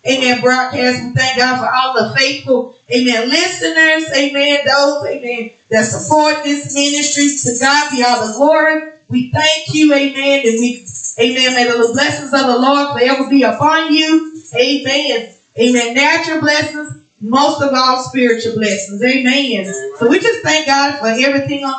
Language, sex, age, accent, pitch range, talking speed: English, female, 20-39, American, 245-305 Hz, 160 wpm